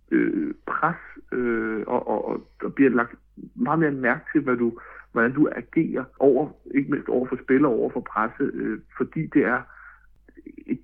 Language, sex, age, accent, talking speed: Danish, male, 60-79, native, 175 wpm